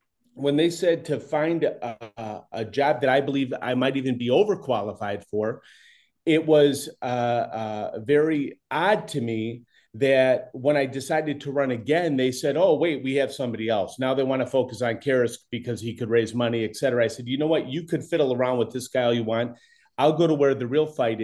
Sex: male